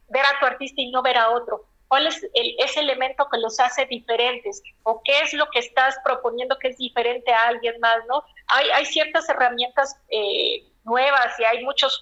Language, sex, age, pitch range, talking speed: Spanish, female, 40-59, 230-280 Hz, 205 wpm